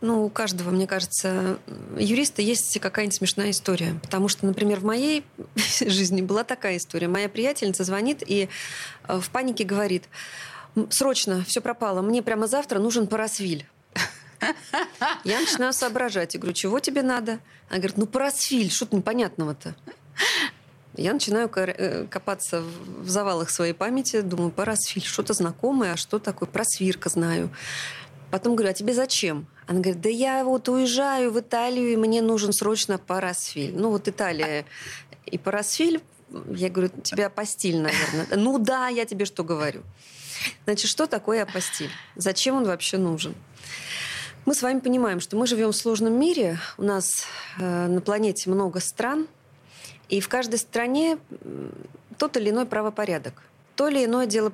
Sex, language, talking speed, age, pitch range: female, Russian, 150 wpm, 20-39, 180-235 Hz